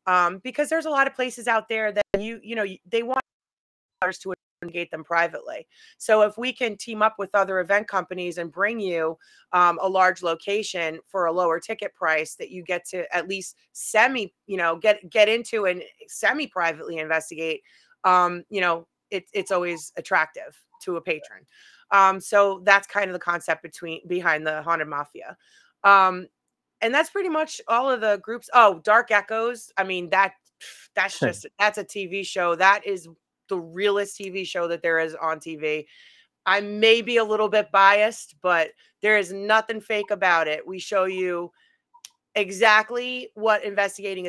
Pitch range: 180-220 Hz